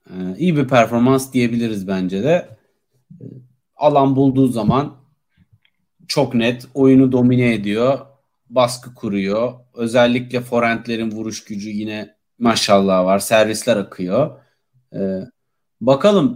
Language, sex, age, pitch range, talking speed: Turkish, male, 40-59, 120-155 Hz, 95 wpm